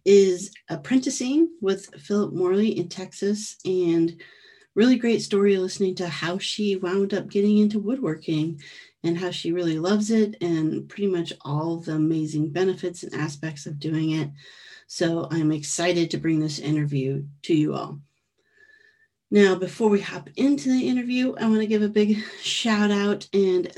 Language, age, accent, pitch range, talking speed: English, 40-59, American, 175-215 Hz, 160 wpm